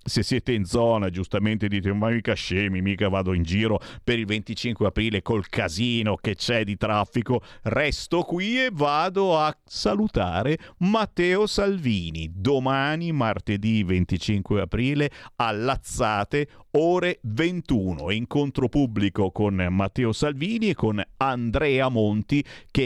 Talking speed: 130 wpm